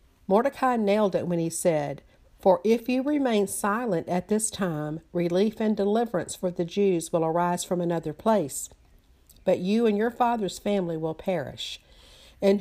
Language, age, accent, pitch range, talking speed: English, 50-69, American, 170-210 Hz, 160 wpm